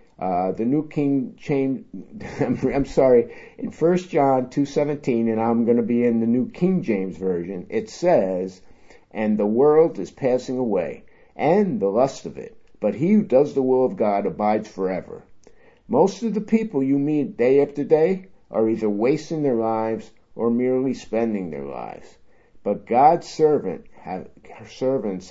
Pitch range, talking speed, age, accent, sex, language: 100-140 Hz, 160 wpm, 50-69, American, male, English